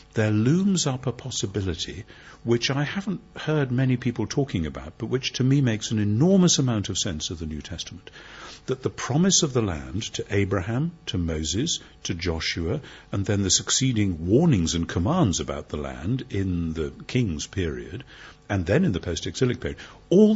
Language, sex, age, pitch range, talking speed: English, male, 50-69, 95-130 Hz, 175 wpm